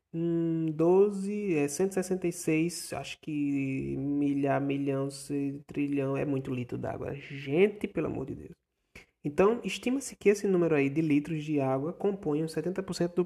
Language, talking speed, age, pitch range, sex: Portuguese, 130 wpm, 20-39, 140-180 Hz, male